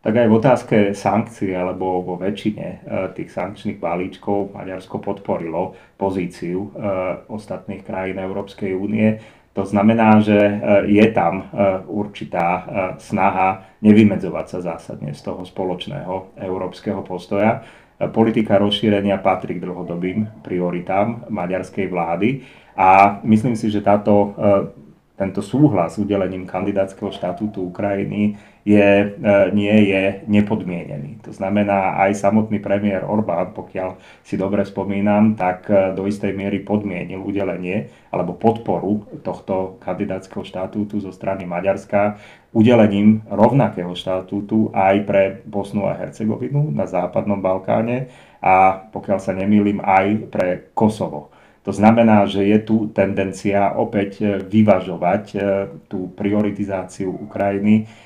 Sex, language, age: male, Slovak, 30-49